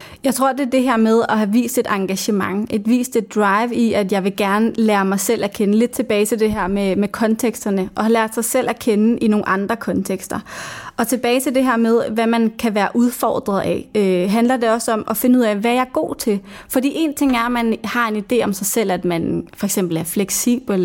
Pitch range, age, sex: 210-245 Hz, 20-39, female